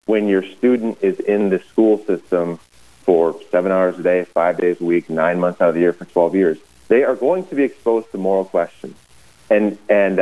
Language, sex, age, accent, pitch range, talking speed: English, male, 40-59, American, 85-115 Hz, 215 wpm